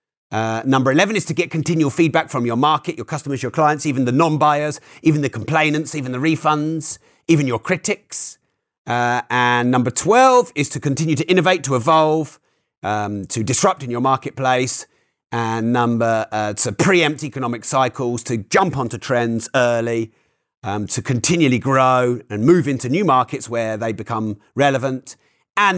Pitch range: 125-155 Hz